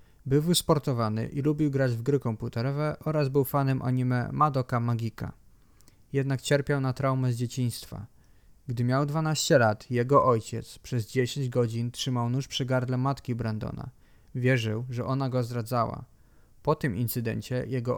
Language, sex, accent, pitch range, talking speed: Polish, male, native, 115-140 Hz, 145 wpm